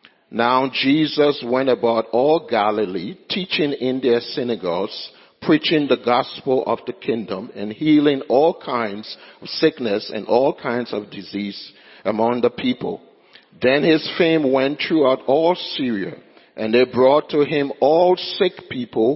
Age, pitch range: 50-69, 115-155 Hz